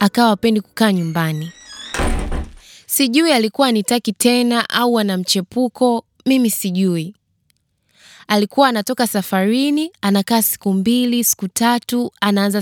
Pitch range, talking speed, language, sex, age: 195-255 Hz, 110 wpm, Swahili, female, 20-39